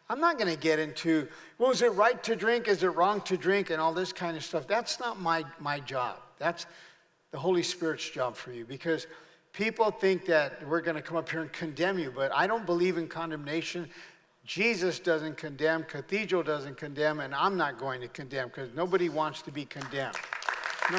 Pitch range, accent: 150-185 Hz, American